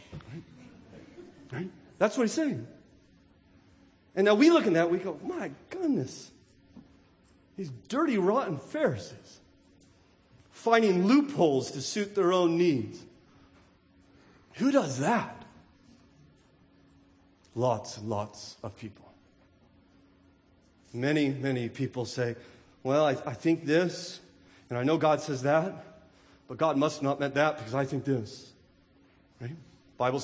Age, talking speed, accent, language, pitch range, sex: 40-59, 125 wpm, American, English, 100-155 Hz, male